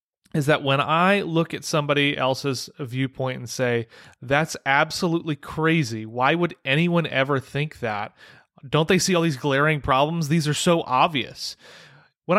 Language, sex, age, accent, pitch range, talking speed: English, male, 30-49, American, 130-170 Hz, 155 wpm